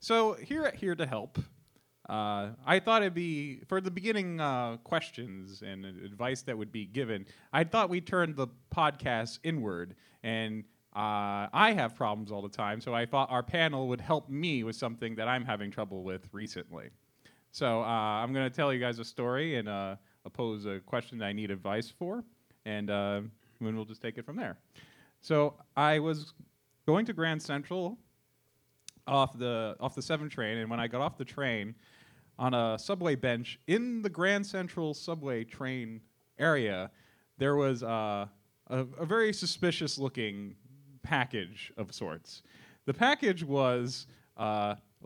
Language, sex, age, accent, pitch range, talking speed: English, male, 30-49, American, 110-165 Hz, 170 wpm